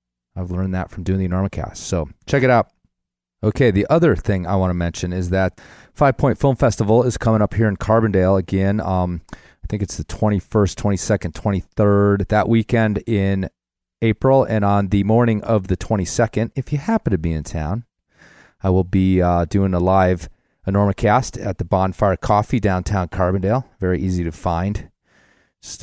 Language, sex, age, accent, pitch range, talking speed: English, male, 30-49, American, 90-110 Hz, 180 wpm